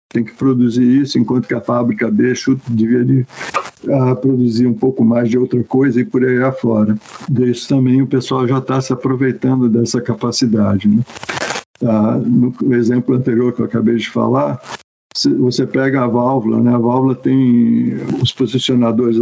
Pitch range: 115-130 Hz